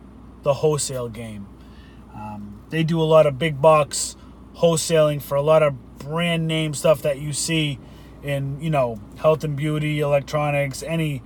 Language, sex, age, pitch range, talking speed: English, male, 30-49, 145-190 Hz, 160 wpm